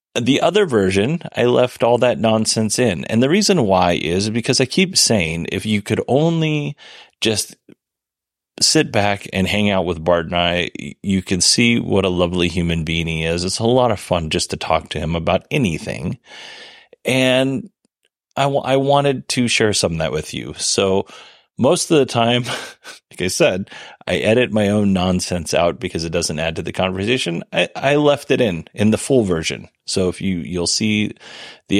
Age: 30-49